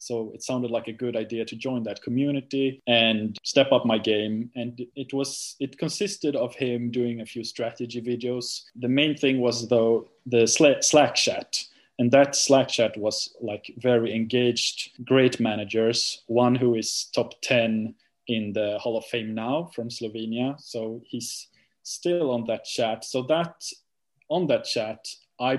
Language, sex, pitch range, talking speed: English, male, 115-130 Hz, 165 wpm